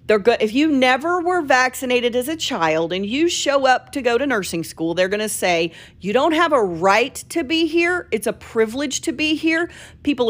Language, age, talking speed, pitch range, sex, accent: English, 40-59, 220 wpm, 195-270 Hz, female, American